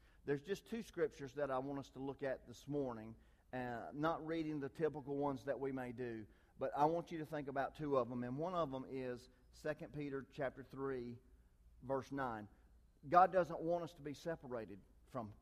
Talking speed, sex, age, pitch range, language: 200 wpm, male, 40-59, 125-170 Hz, English